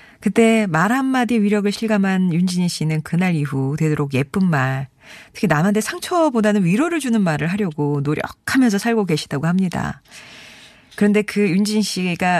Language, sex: Korean, female